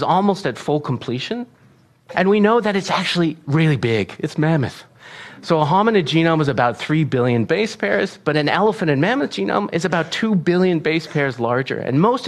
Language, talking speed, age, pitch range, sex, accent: English, 190 wpm, 40-59, 130-185 Hz, male, American